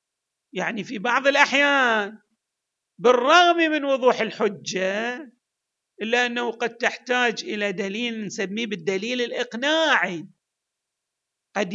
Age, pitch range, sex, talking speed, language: 50-69, 210-290 Hz, male, 90 wpm, Arabic